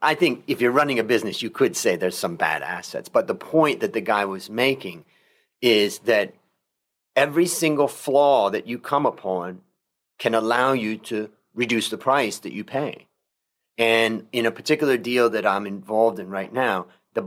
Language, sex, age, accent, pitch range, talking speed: English, male, 40-59, American, 110-130 Hz, 185 wpm